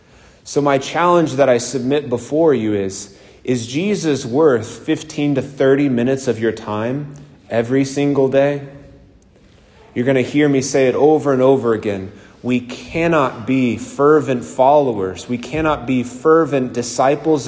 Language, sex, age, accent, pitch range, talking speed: English, male, 30-49, American, 120-150 Hz, 150 wpm